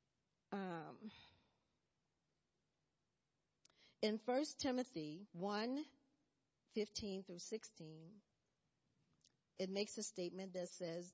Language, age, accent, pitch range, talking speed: English, 50-69, American, 180-235 Hz, 75 wpm